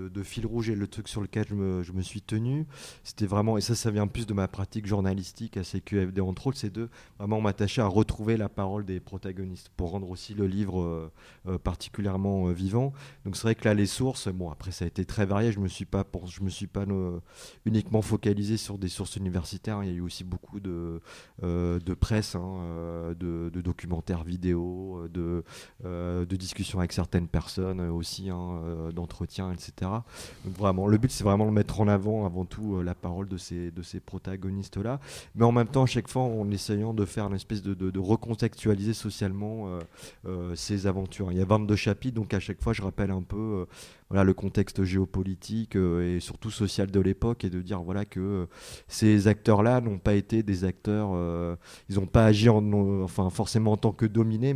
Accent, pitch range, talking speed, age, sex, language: French, 90-110 Hz, 200 wpm, 30-49, male, French